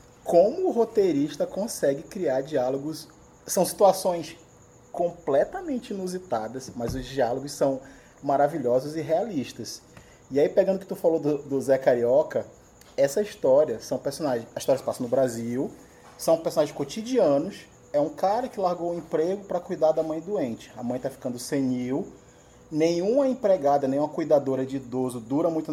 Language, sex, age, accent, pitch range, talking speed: Portuguese, male, 20-39, Brazilian, 145-205 Hz, 145 wpm